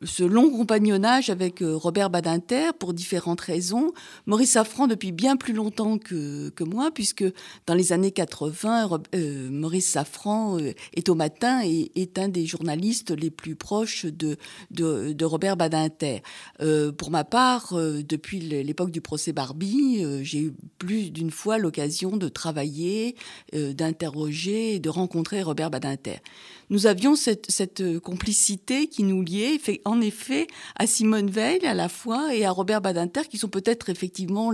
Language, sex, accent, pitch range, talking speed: French, female, French, 160-215 Hz, 160 wpm